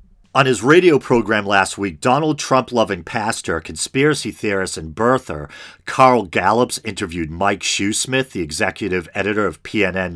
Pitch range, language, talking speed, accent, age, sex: 90-120 Hz, English, 135 wpm, American, 40-59, male